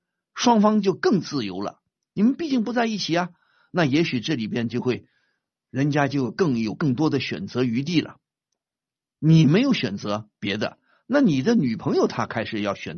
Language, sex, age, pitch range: Chinese, male, 50-69, 125-200 Hz